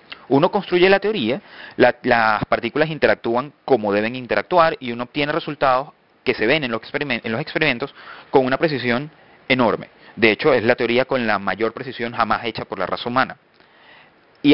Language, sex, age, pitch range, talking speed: Spanish, male, 30-49, 125-170 Hz, 180 wpm